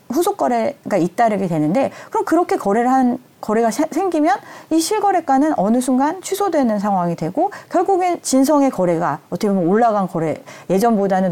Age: 40-59